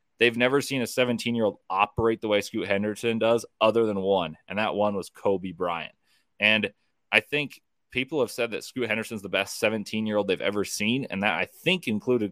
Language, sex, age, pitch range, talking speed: English, male, 20-39, 105-125 Hz, 195 wpm